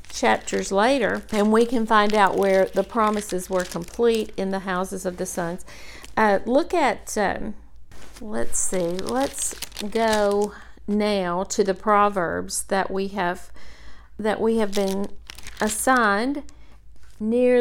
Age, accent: 50-69, American